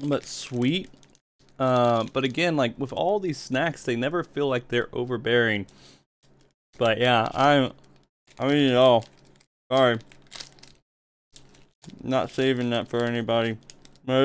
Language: English